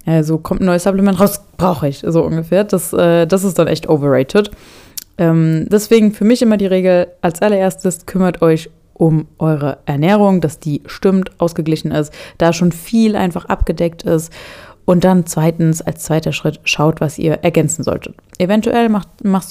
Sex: female